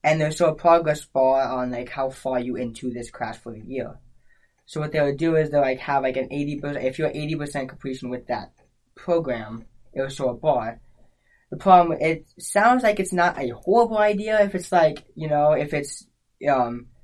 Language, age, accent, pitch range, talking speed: English, 10-29, American, 125-155 Hz, 210 wpm